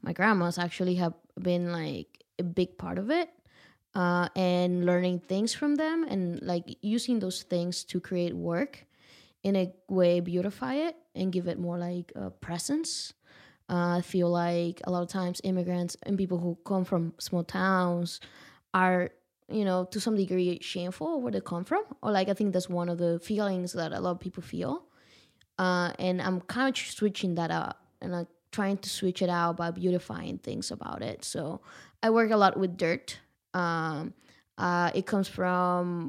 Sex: female